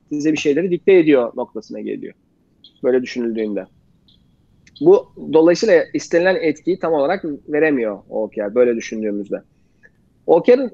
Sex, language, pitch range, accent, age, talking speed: male, Turkish, 150-200 Hz, native, 40-59, 110 wpm